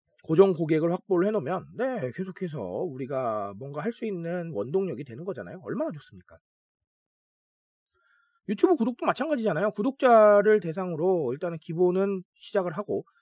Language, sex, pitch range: Korean, male, 160-240 Hz